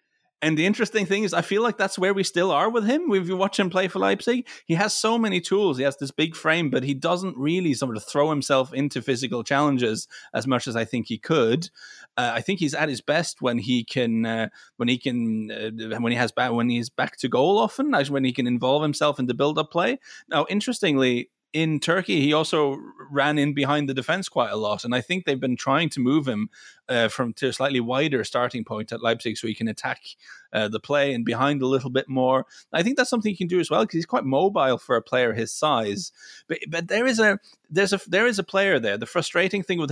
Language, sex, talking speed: English, male, 245 wpm